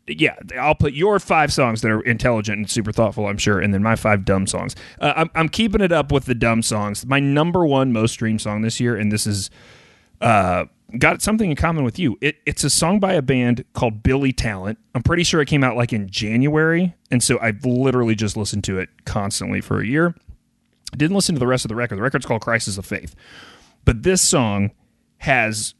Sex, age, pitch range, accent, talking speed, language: male, 30-49, 105-145 Hz, American, 225 wpm, English